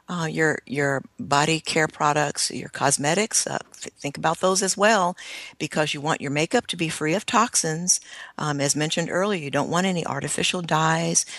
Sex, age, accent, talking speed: female, 50-69, American, 185 wpm